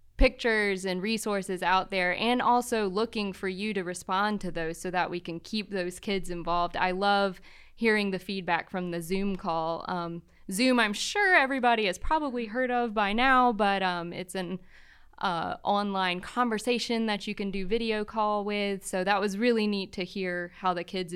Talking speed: 185 wpm